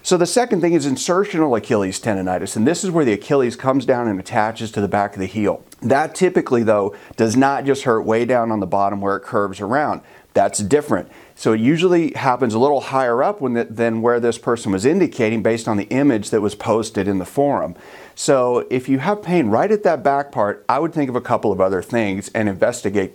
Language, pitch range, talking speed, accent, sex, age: English, 110-145 Hz, 225 wpm, American, male, 40-59